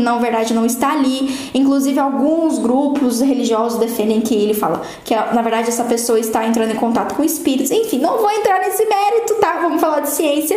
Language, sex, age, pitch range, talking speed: Portuguese, female, 10-29, 255-335 Hz, 200 wpm